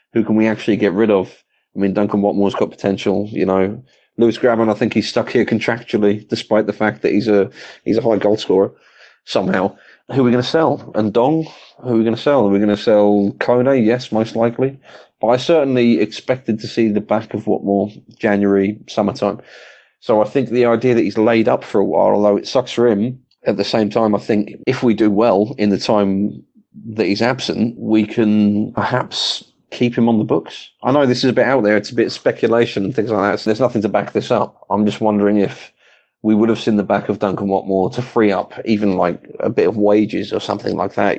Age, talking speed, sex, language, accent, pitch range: 30-49, 235 wpm, male, English, British, 105-115 Hz